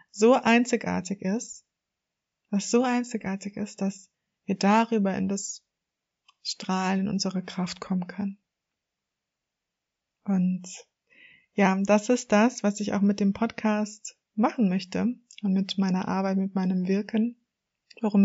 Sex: female